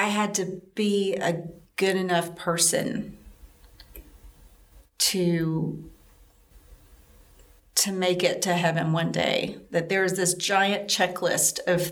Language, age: English, 40-59